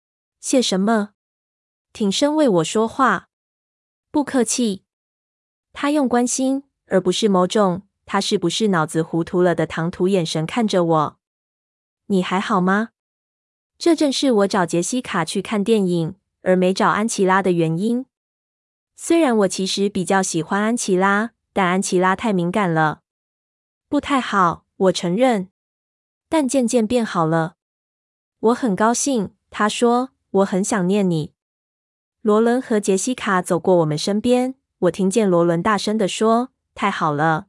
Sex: female